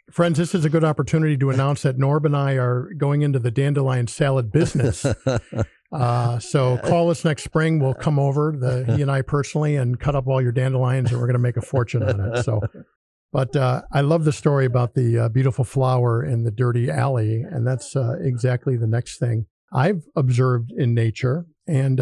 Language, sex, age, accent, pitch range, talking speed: English, male, 50-69, American, 125-155 Hz, 205 wpm